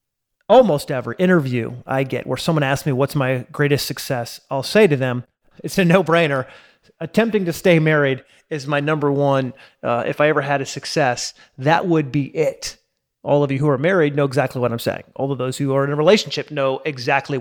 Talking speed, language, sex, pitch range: 205 wpm, English, male, 135-175 Hz